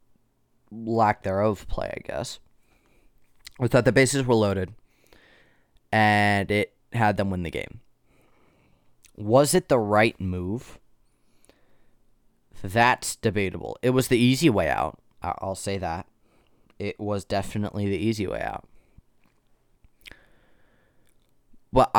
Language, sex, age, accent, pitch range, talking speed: English, male, 20-39, American, 95-120 Hz, 115 wpm